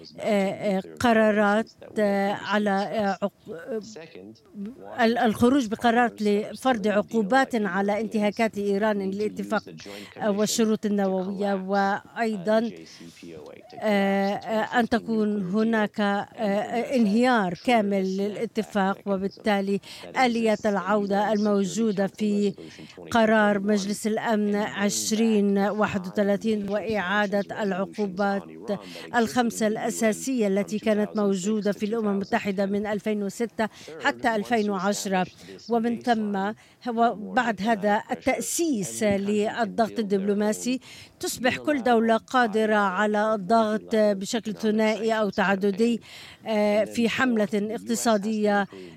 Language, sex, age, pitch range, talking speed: Arabic, female, 50-69, 200-225 Hz, 75 wpm